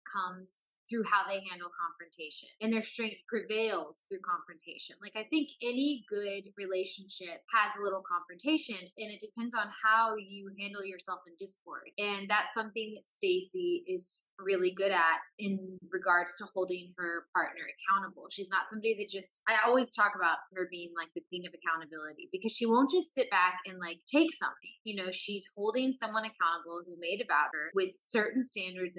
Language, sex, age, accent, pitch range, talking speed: English, female, 20-39, American, 180-240 Hz, 180 wpm